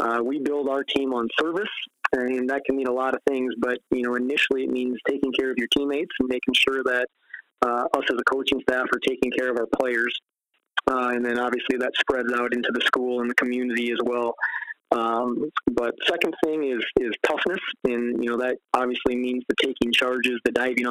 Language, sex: English, male